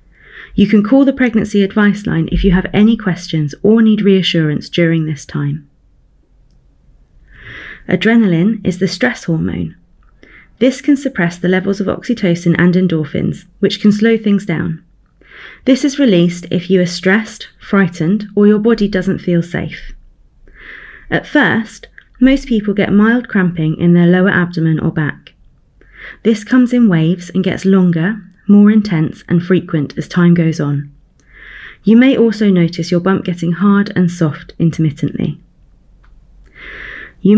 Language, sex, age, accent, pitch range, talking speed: English, female, 30-49, British, 170-215 Hz, 145 wpm